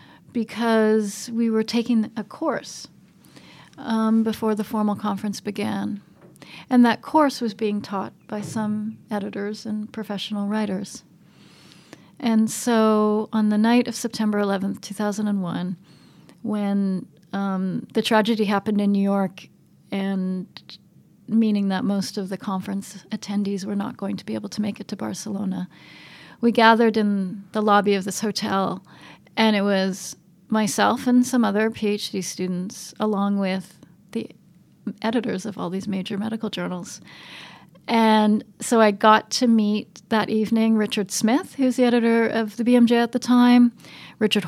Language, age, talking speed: English, 30-49, 145 wpm